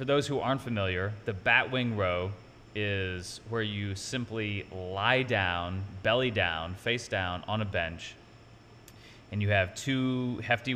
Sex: male